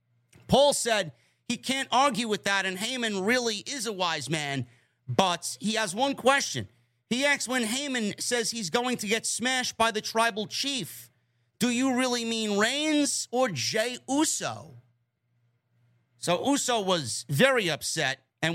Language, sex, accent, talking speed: English, male, American, 150 wpm